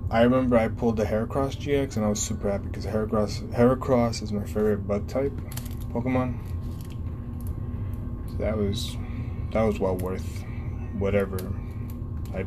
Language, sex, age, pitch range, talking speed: English, male, 20-39, 100-110 Hz, 145 wpm